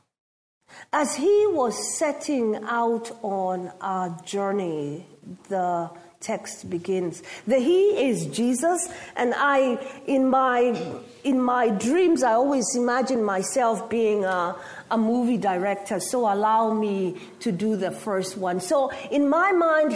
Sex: female